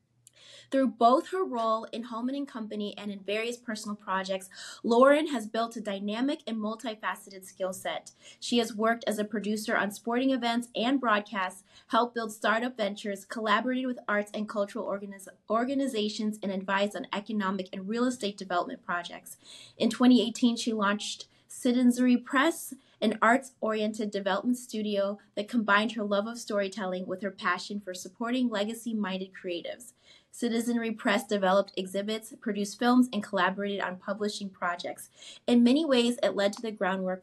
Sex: female